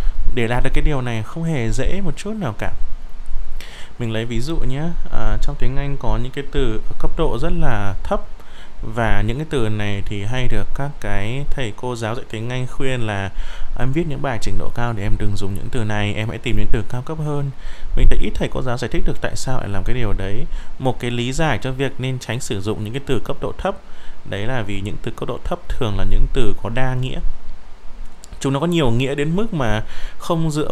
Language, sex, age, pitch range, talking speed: Vietnamese, male, 20-39, 105-145 Hz, 250 wpm